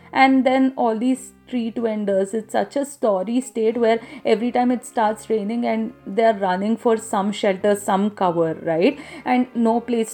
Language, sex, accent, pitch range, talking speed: English, female, Indian, 220-280 Hz, 170 wpm